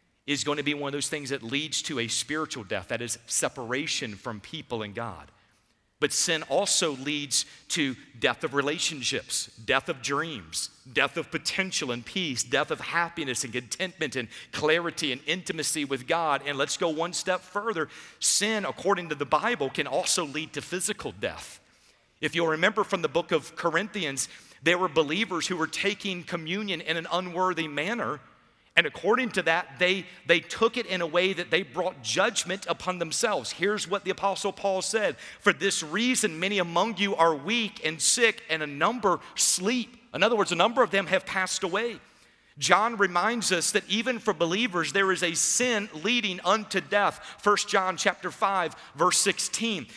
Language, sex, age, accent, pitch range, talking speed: English, male, 50-69, American, 160-210 Hz, 180 wpm